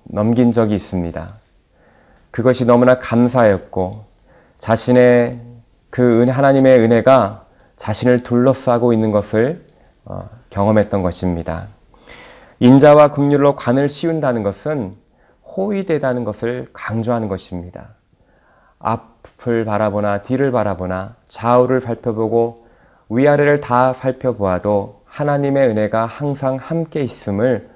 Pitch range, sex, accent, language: 105-130 Hz, male, native, Korean